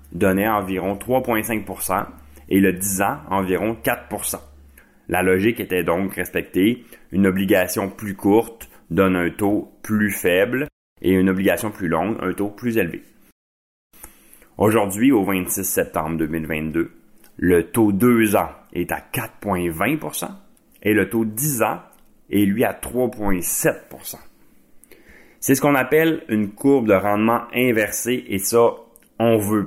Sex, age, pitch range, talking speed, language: male, 30-49, 90-110 Hz, 135 wpm, French